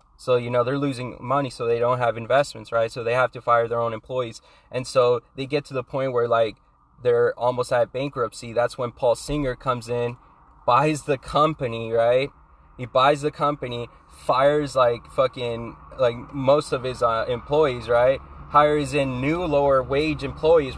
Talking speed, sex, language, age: 180 wpm, male, English, 20-39